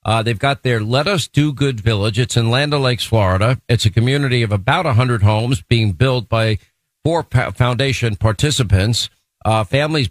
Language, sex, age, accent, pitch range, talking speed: English, male, 50-69, American, 110-130 Hz, 180 wpm